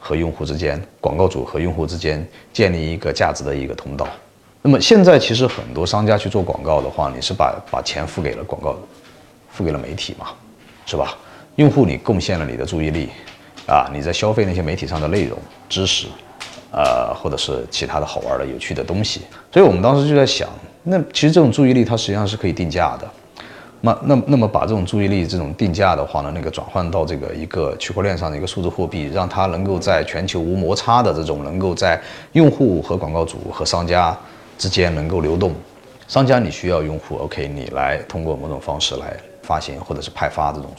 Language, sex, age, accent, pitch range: Chinese, male, 30-49, native, 80-110 Hz